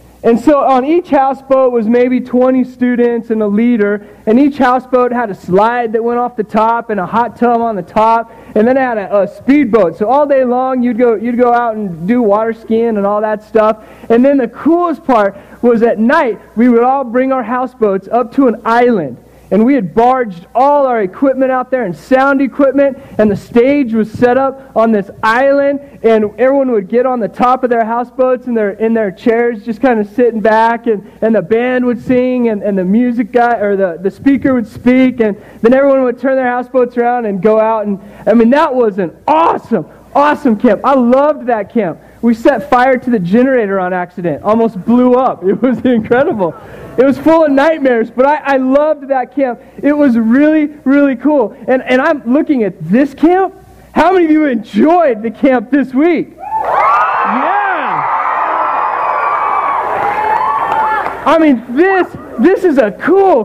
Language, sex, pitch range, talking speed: English, male, 225-275 Hz, 195 wpm